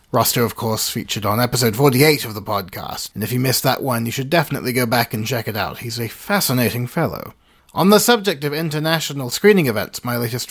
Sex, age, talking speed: male, 30-49, 215 wpm